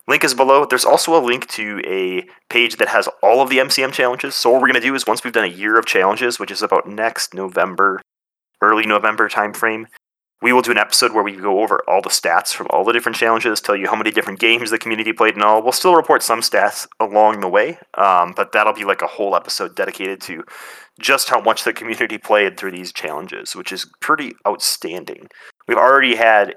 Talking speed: 230 wpm